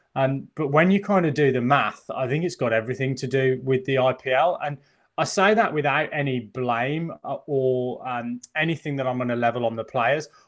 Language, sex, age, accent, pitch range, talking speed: English, male, 20-39, British, 120-145 Hz, 210 wpm